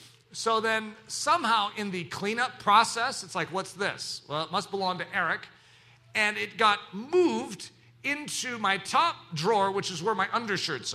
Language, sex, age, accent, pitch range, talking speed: English, male, 40-59, American, 175-230 Hz, 165 wpm